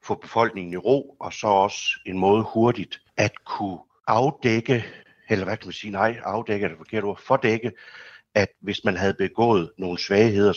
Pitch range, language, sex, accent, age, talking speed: 95-115 Hz, Danish, male, native, 60-79, 180 wpm